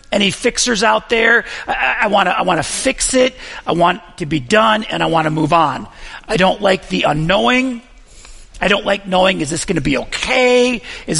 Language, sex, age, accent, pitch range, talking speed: English, male, 40-59, American, 140-215 Hz, 215 wpm